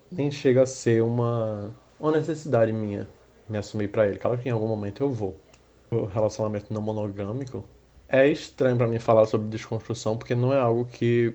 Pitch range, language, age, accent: 105-130 Hz, Portuguese, 20-39, Brazilian